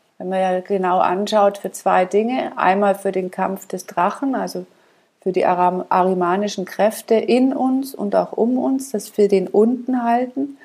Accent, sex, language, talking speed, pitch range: German, female, German, 170 wpm, 190-235 Hz